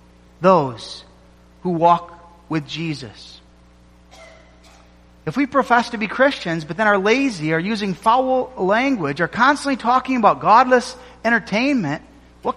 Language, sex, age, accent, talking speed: English, male, 40-59, American, 125 wpm